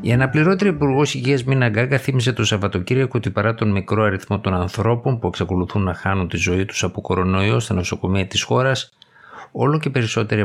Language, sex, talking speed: Greek, male, 185 wpm